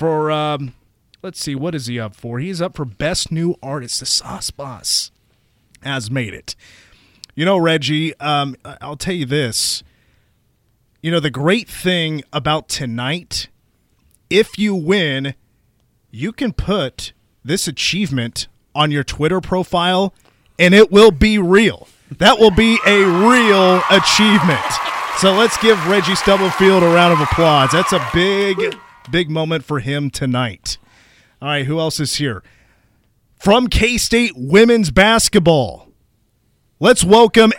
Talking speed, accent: 140 wpm, American